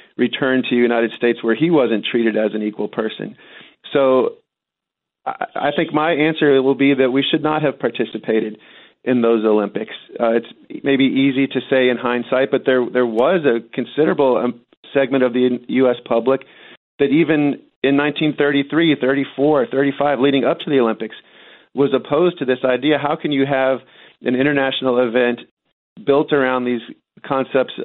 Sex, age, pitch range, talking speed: male, 40-59, 120-135 Hz, 160 wpm